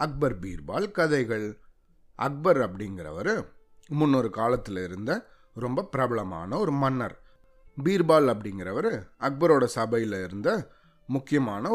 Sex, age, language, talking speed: male, 30-49, Tamil, 90 wpm